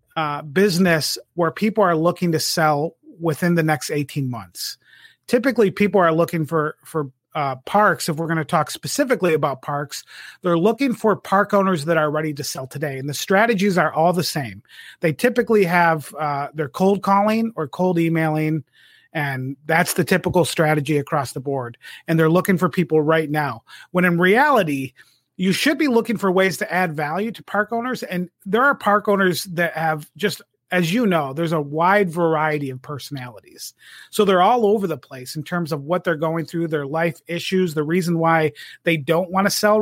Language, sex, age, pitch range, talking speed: English, male, 30-49, 155-200 Hz, 195 wpm